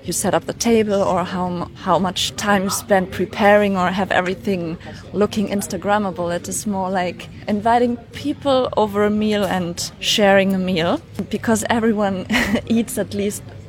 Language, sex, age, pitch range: Chinese, female, 20-39, 185-225 Hz